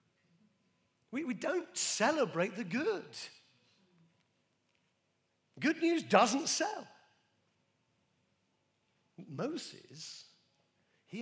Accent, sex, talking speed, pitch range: British, male, 65 wpm, 150-220 Hz